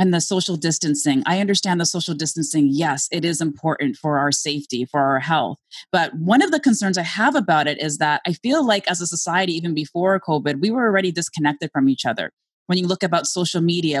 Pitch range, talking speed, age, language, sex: 155-200 Hz, 225 wpm, 20-39, English, female